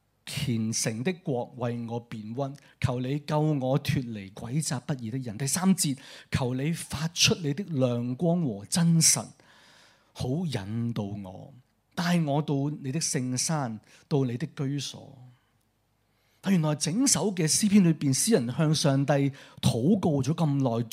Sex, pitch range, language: male, 125-175 Hz, Chinese